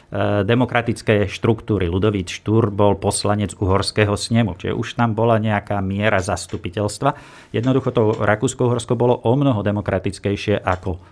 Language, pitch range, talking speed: Slovak, 105-130 Hz, 130 wpm